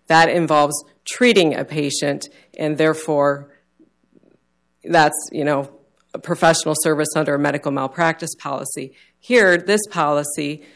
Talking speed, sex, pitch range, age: 115 wpm, female, 150-170 Hz, 40-59